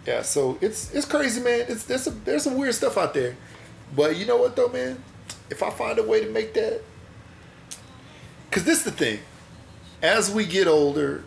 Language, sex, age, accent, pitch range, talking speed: English, male, 40-59, American, 120-150 Hz, 200 wpm